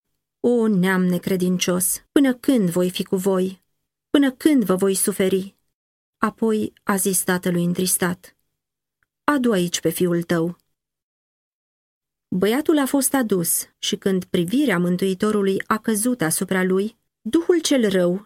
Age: 30-49